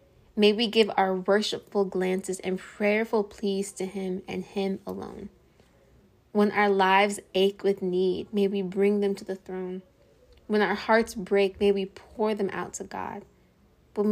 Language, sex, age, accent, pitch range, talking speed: English, female, 20-39, American, 180-205 Hz, 165 wpm